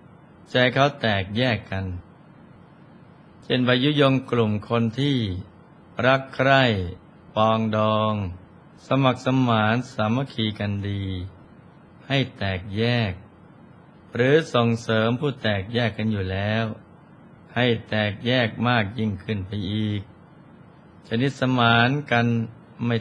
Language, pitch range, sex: Thai, 105-125 Hz, male